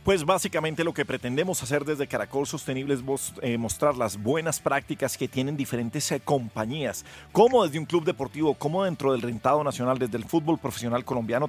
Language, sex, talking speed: Spanish, male, 170 wpm